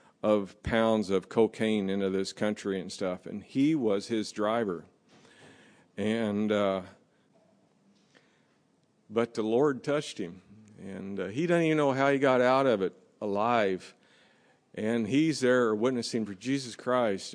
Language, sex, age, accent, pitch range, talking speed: English, male, 50-69, American, 100-120 Hz, 140 wpm